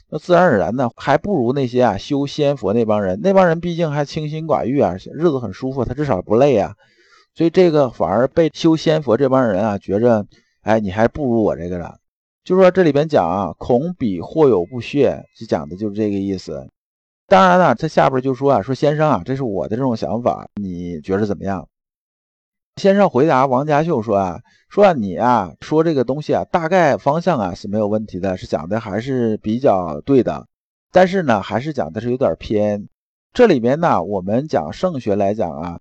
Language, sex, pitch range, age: Chinese, male, 100-155 Hz, 50-69